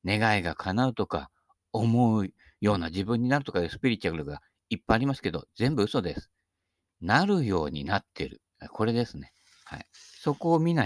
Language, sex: Japanese, male